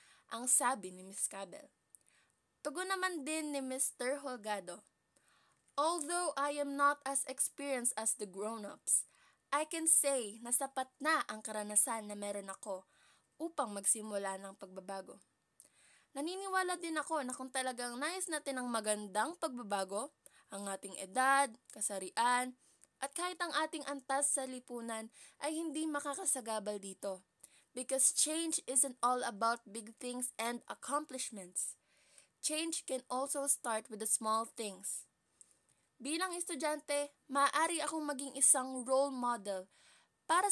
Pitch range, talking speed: 215-290 Hz, 130 wpm